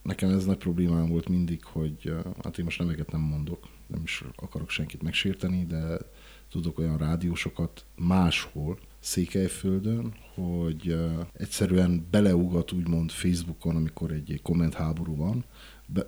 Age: 50-69